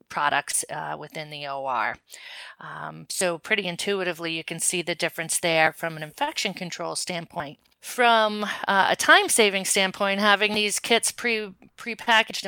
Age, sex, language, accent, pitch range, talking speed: 40-59, female, English, American, 170-200 Hz, 140 wpm